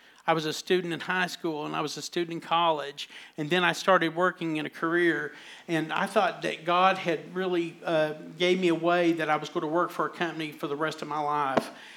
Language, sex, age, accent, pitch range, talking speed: English, male, 50-69, American, 155-175 Hz, 245 wpm